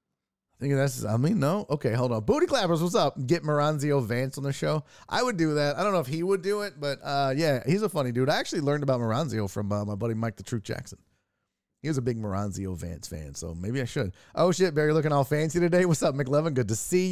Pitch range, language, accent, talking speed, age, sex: 125-190 Hz, English, American, 265 wpm, 30-49, male